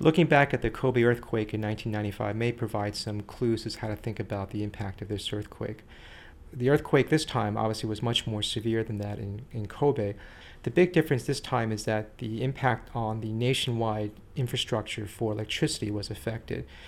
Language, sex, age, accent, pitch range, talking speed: English, male, 40-59, American, 105-125 Hz, 190 wpm